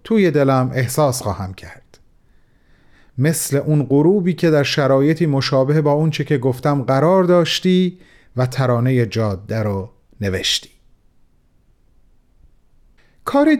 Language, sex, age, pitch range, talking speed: Persian, male, 40-59, 130-185 Hz, 105 wpm